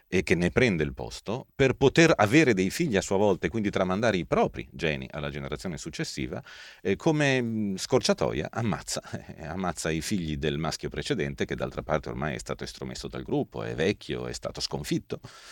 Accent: native